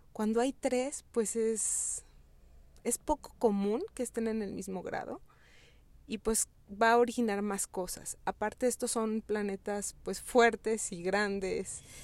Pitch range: 195-255 Hz